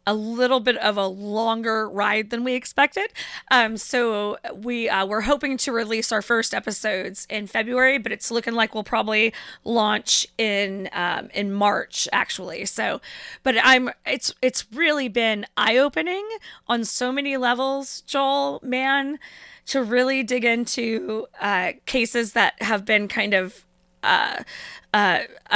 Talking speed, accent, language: 150 wpm, American, English